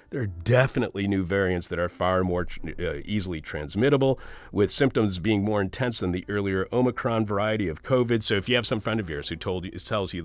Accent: American